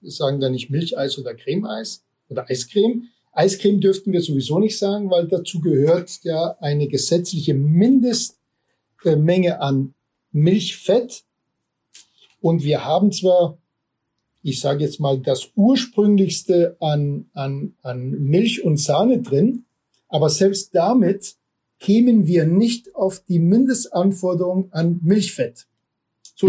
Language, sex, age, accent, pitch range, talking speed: German, male, 50-69, German, 155-200 Hz, 120 wpm